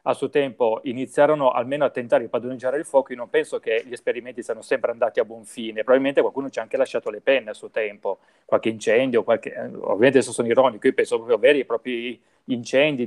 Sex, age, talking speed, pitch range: male, 30-49, 220 wpm, 130-205 Hz